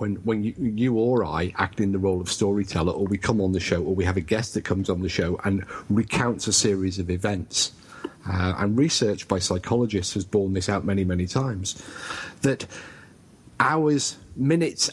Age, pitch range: 40-59, 95-120 Hz